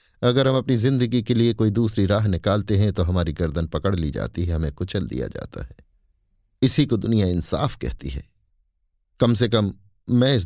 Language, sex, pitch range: Hindi, male, 85-120 Hz